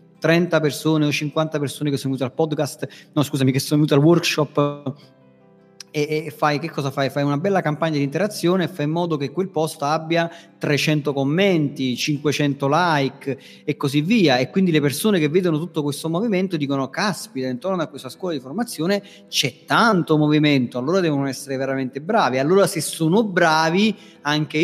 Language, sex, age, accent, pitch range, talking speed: Italian, male, 30-49, native, 140-185 Hz, 180 wpm